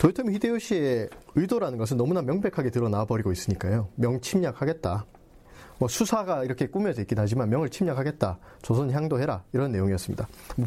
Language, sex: Korean, male